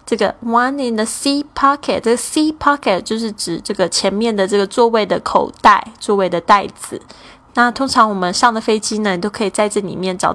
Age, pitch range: 10-29, 195-240 Hz